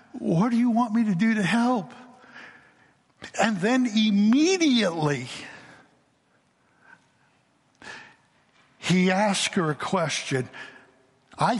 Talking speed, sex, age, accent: 95 wpm, male, 60-79, American